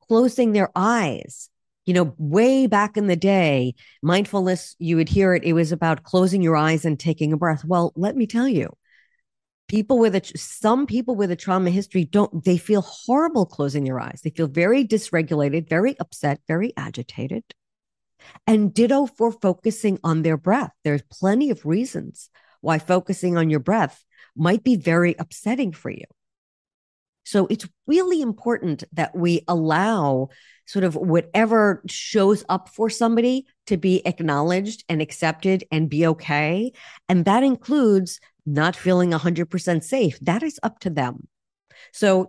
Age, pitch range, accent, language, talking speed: 50-69, 160-220 Hz, American, English, 155 wpm